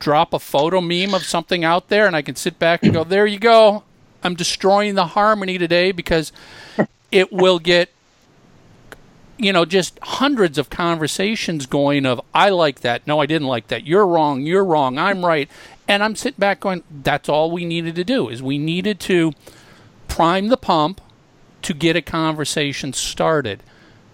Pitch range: 135-185 Hz